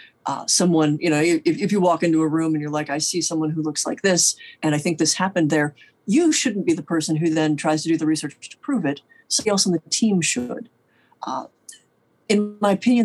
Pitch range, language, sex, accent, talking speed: 155-185 Hz, English, female, American, 240 wpm